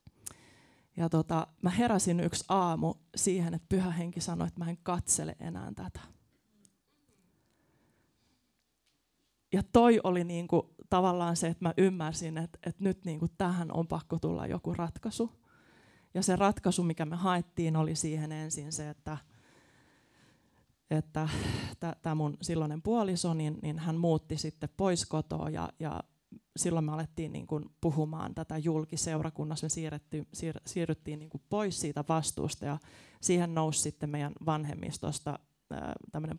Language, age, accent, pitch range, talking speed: Finnish, 20-39, native, 150-175 Hz, 140 wpm